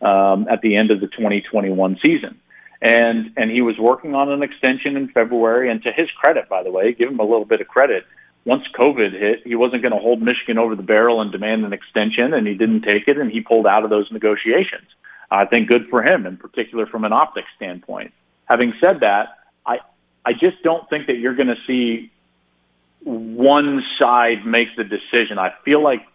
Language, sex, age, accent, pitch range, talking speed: English, male, 40-59, American, 110-135 Hz, 210 wpm